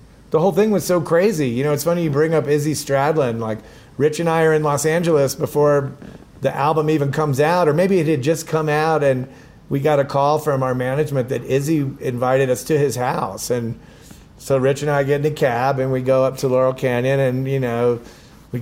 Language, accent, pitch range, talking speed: English, American, 130-155 Hz, 230 wpm